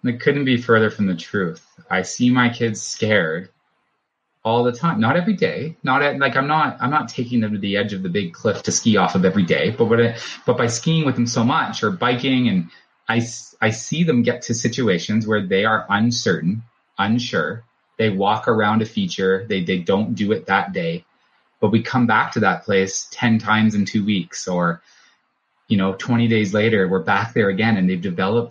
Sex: male